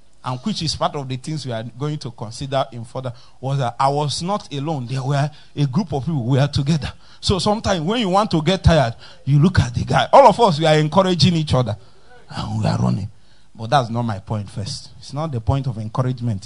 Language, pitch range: English, 130-215 Hz